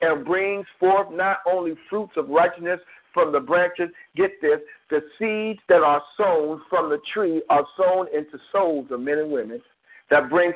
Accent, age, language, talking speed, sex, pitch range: American, 50-69, English, 175 wpm, male, 145-195 Hz